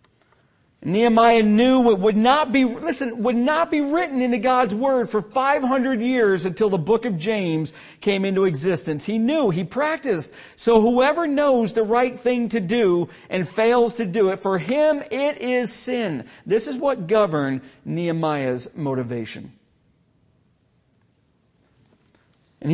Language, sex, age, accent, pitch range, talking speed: English, male, 50-69, American, 140-235 Hz, 145 wpm